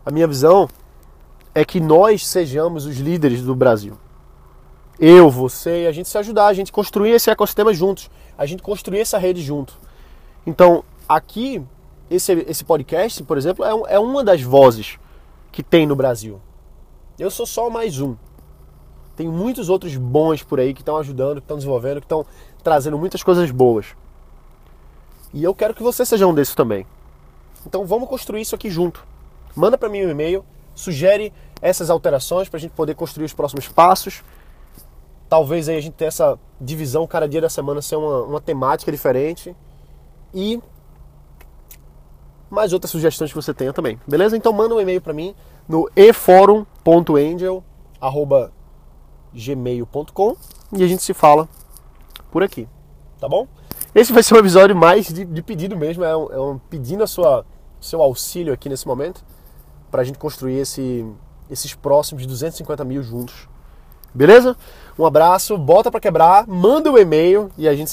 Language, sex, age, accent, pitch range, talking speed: Portuguese, male, 20-39, Brazilian, 135-190 Hz, 165 wpm